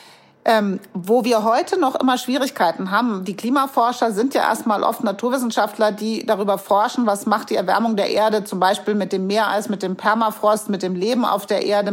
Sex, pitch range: female, 205-240 Hz